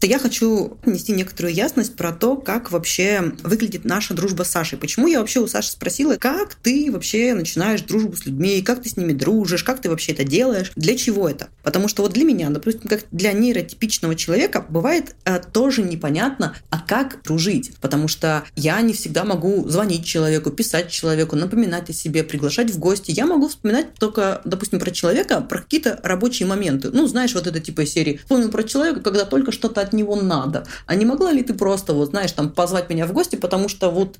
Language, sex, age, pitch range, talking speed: Russian, female, 20-39, 165-230 Hz, 200 wpm